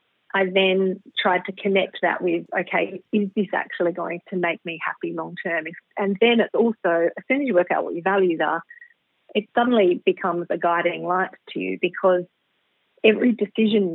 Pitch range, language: 180-210 Hz, English